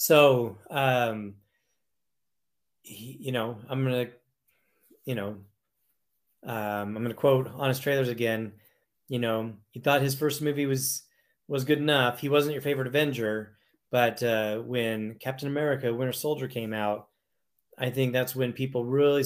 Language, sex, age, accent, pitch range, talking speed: English, male, 30-49, American, 115-135 Hz, 145 wpm